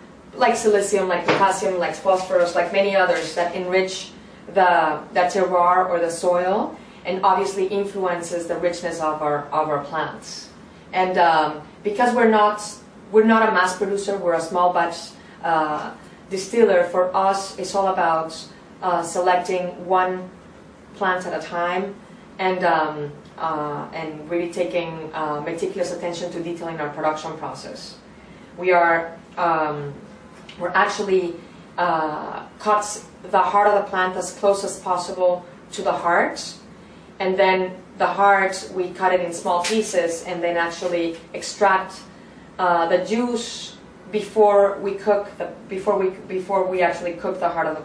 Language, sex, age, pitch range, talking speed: English, female, 30-49, 170-195 Hz, 150 wpm